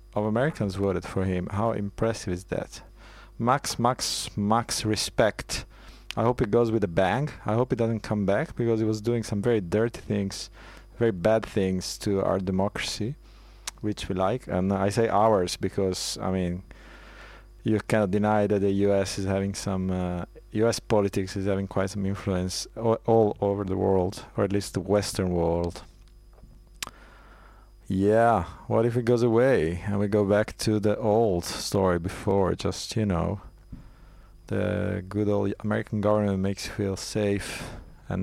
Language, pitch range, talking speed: English, 95-110 Hz, 165 wpm